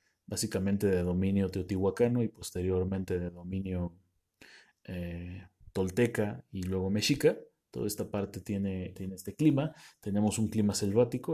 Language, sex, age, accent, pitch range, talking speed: Spanish, male, 30-49, Mexican, 95-115 Hz, 125 wpm